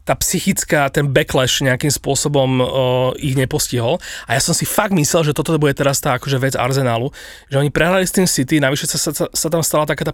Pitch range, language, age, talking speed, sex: 135-160 Hz, Slovak, 30-49, 220 wpm, male